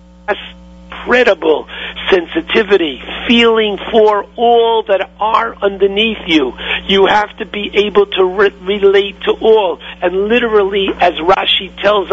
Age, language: 50-69, English